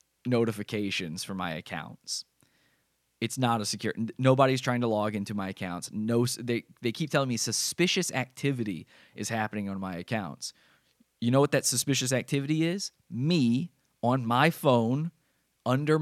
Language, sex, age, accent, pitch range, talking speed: English, male, 20-39, American, 110-145 Hz, 150 wpm